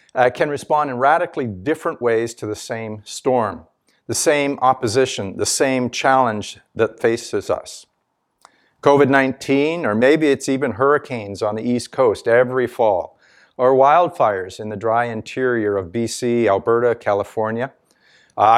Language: English